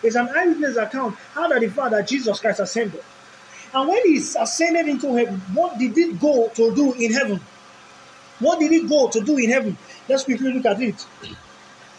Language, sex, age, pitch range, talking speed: English, male, 30-49, 215-295 Hz, 190 wpm